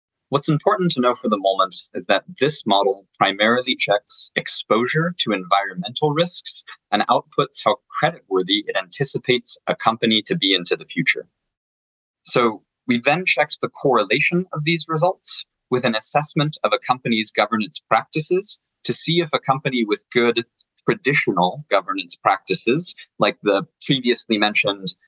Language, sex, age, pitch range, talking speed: English, male, 20-39, 110-170 Hz, 145 wpm